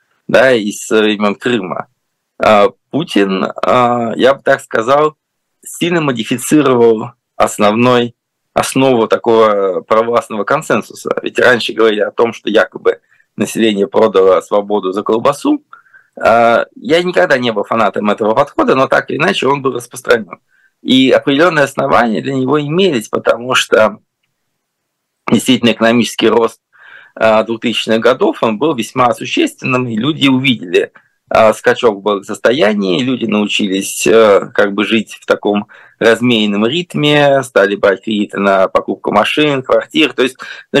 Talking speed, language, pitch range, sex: 125 wpm, Russian, 110-150 Hz, male